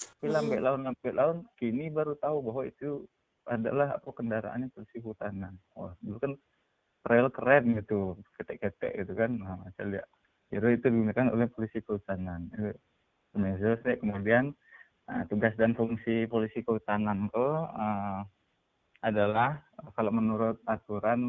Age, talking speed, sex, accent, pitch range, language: 20-39, 125 wpm, male, native, 100-120 Hz, Indonesian